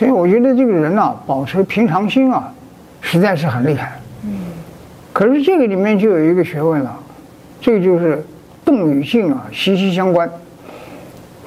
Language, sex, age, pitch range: Chinese, male, 60-79, 165-245 Hz